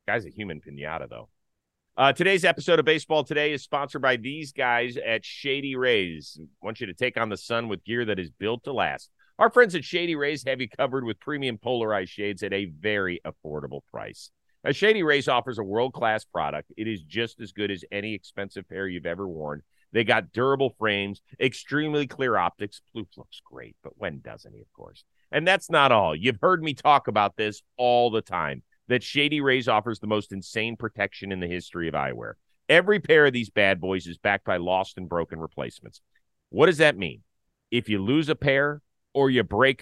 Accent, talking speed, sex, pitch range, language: American, 205 wpm, male, 100-135 Hz, English